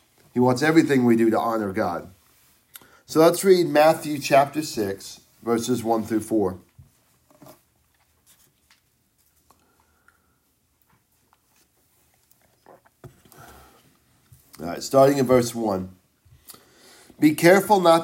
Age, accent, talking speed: 40-59, American, 85 wpm